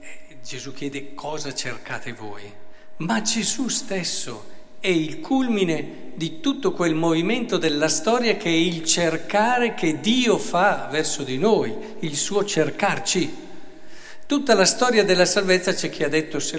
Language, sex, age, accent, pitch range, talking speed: Italian, male, 50-69, native, 140-205 Hz, 145 wpm